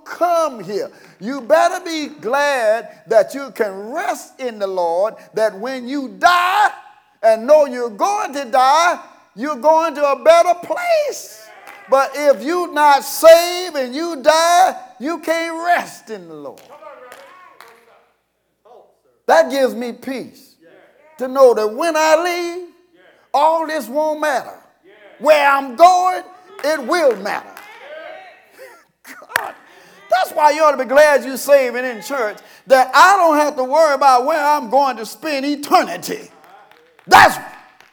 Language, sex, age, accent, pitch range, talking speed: English, male, 50-69, American, 225-325 Hz, 140 wpm